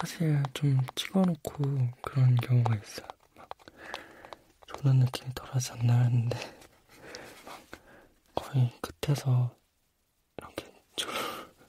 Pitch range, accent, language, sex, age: 125-140 Hz, native, Korean, male, 20-39